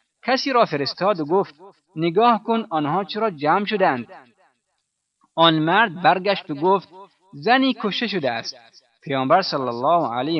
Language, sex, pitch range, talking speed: Persian, male, 130-170 Hz, 140 wpm